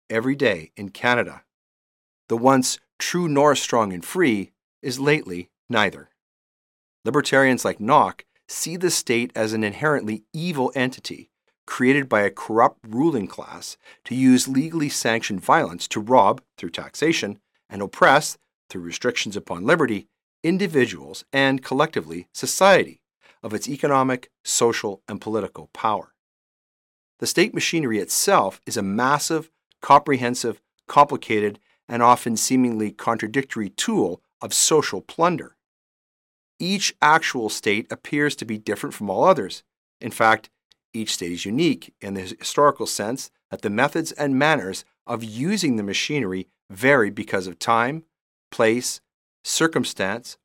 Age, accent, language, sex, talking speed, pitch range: 40-59, American, English, male, 130 wpm, 110-140 Hz